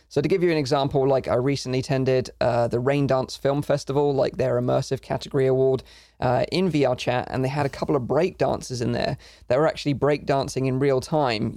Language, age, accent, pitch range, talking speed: English, 20-39, British, 125-145 Hz, 225 wpm